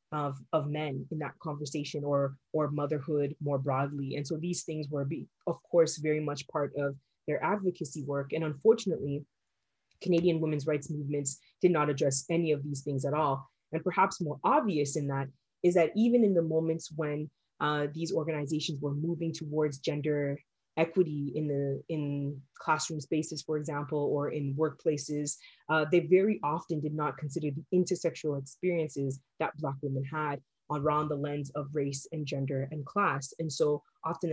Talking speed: 170 wpm